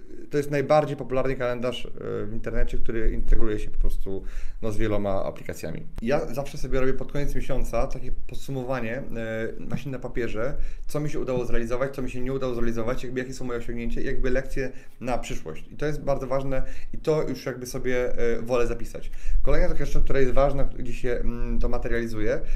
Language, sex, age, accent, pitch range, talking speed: Polish, male, 30-49, native, 120-145 Hz, 190 wpm